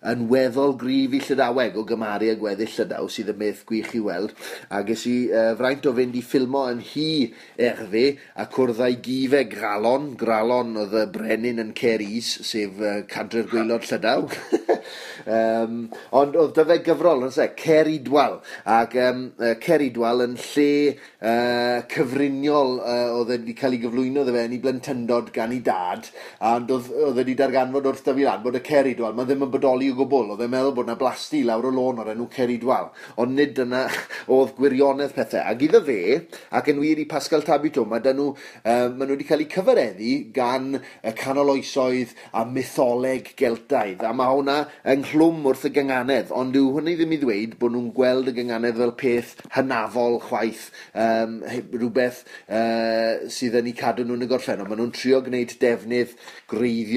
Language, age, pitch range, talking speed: English, 30-49, 115-140 Hz, 170 wpm